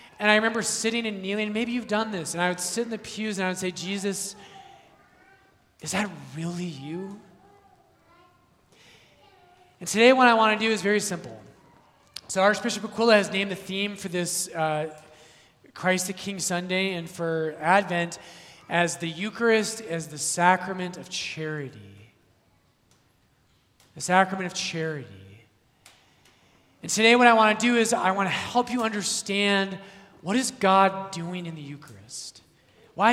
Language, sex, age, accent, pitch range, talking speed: English, male, 20-39, American, 160-205 Hz, 160 wpm